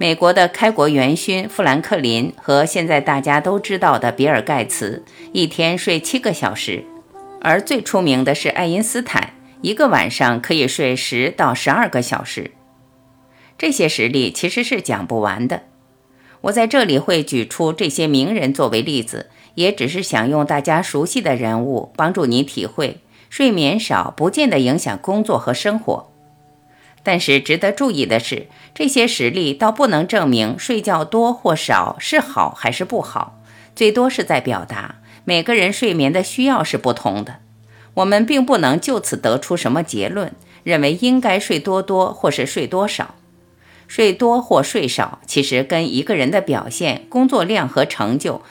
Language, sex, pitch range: Chinese, female, 130-215 Hz